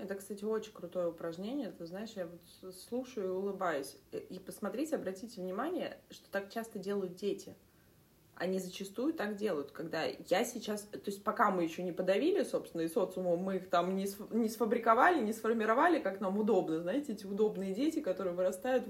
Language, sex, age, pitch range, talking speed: Russian, female, 20-39, 180-225 Hz, 180 wpm